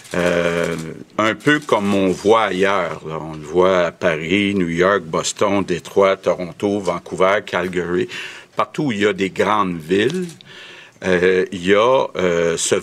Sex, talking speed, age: male, 155 wpm, 60-79